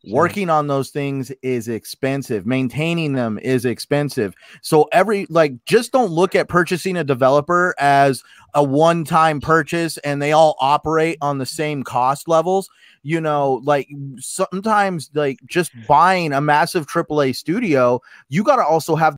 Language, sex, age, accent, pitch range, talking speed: English, male, 30-49, American, 135-165 Hz, 155 wpm